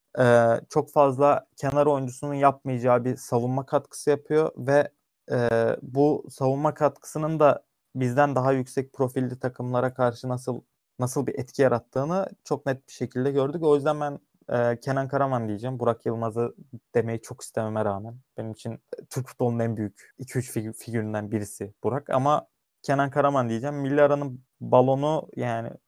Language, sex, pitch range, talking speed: Turkish, male, 115-140 Hz, 145 wpm